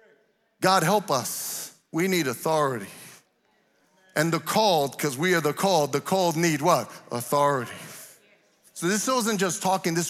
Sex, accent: male, American